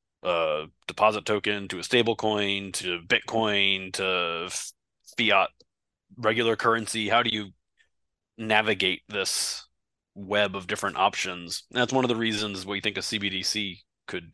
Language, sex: English, male